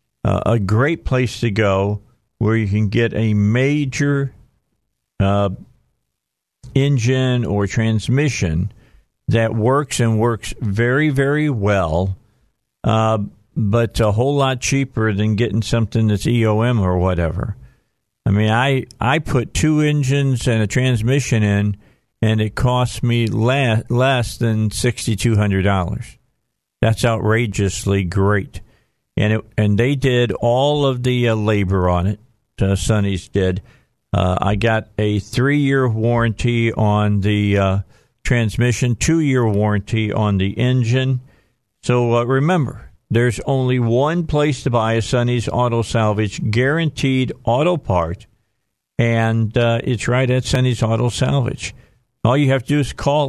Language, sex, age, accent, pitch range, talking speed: English, male, 50-69, American, 105-130 Hz, 135 wpm